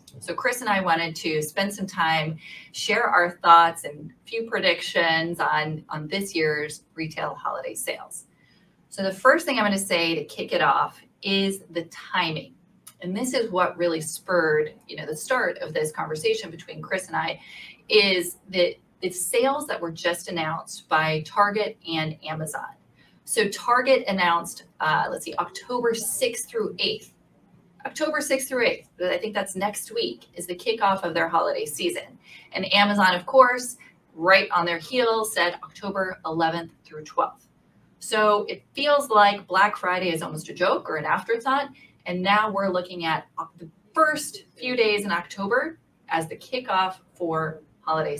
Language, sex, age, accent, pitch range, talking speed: English, female, 30-49, American, 170-230 Hz, 170 wpm